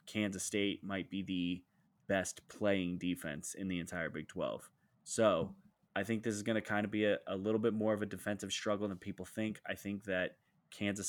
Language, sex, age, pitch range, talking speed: English, male, 20-39, 95-105 Hz, 210 wpm